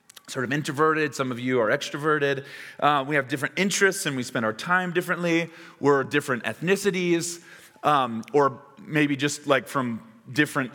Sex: male